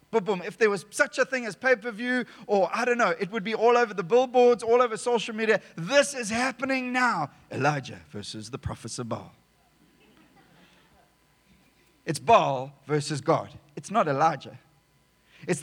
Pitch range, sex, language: 165-245 Hz, male, English